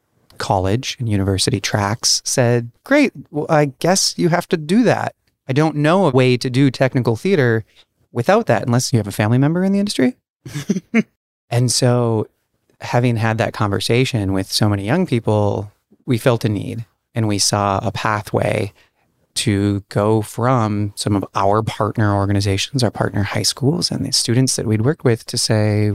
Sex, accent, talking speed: male, American, 175 wpm